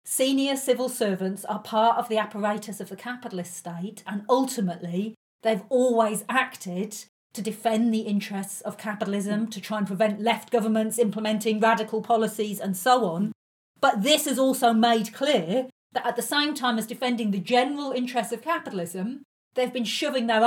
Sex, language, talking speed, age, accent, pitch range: female, English, 165 wpm, 40-59, British, 200-255 Hz